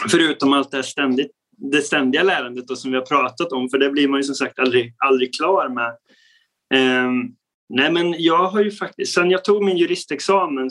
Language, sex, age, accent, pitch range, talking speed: Swedish, male, 20-39, native, 130-170 Hz, 195 wpm